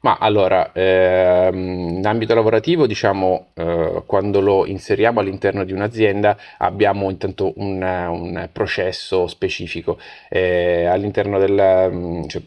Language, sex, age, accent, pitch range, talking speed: Italian, male, 30-49, native, 90-100 Hz, 115 wpm